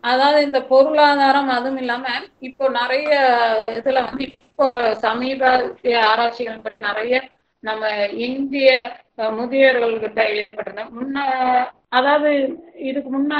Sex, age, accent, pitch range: female, 30-49, Indian, 220-260 Hz